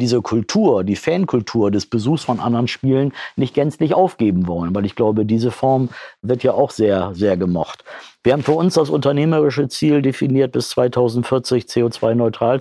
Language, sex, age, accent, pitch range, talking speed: German, male, 50-69, German, 115-130 Hz, 165 wpm